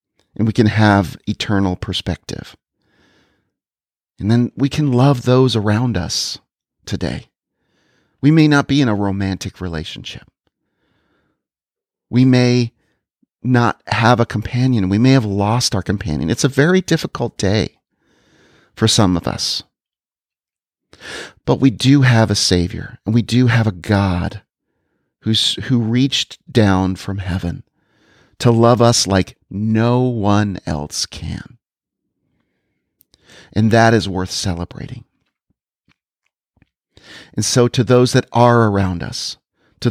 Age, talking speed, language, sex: 40-59, 125 wpm, English, male